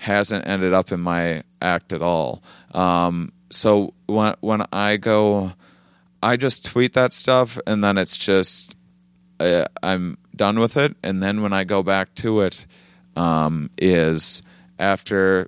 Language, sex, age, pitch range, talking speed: English, male, 30-49, 85-100 Hz, 150 wpm